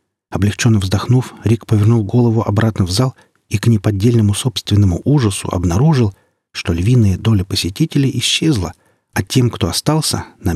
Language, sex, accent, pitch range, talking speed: Russian, male, native, 100-115 Hz, 135 wpm